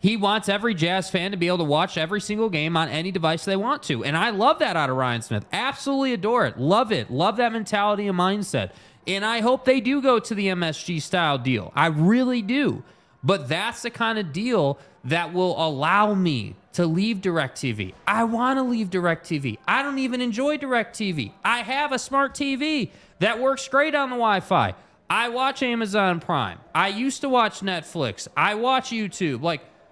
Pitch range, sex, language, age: 165-230 Hz, male, English, 20-39